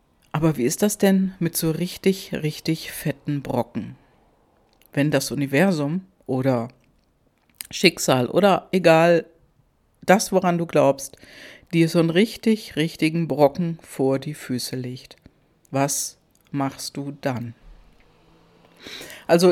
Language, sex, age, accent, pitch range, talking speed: German, female, 60-79, German, 150-195 Hz, 115 wpm